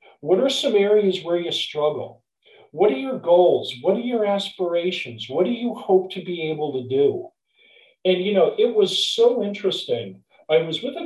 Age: 40-59